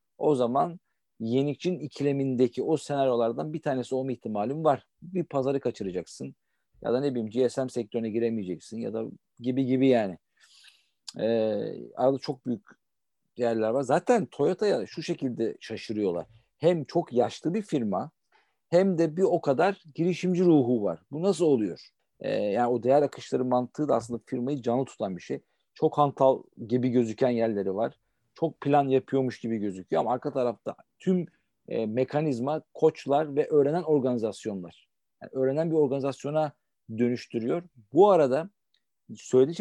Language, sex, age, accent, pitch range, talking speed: Turkish, male, 50-69, native, 120-150 Hz, 145 wpm